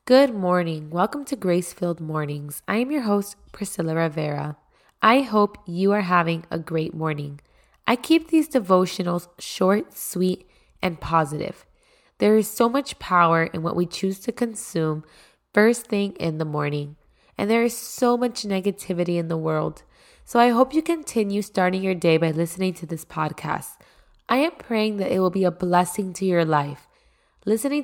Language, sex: English, female